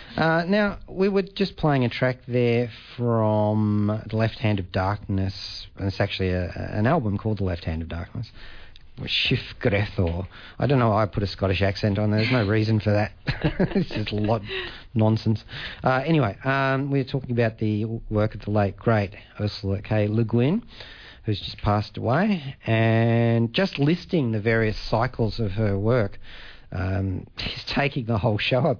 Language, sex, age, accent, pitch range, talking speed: English, male, 40-59, Australian, 100-120 Hz, 180 wpm